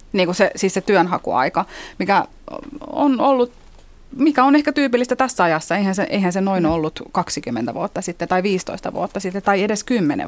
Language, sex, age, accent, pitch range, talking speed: Finnish, female, 30-49, native, 160-200 Hz, 180 wpm